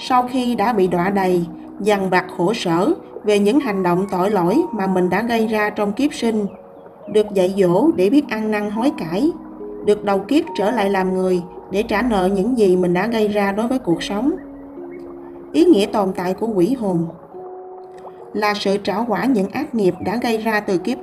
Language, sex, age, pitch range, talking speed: Vietnamese, female, 20-39, 185-245 Hz, 205 wpm